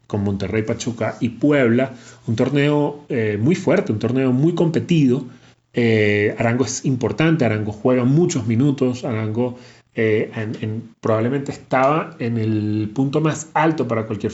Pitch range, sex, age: 110-135 Hz, male, 30-49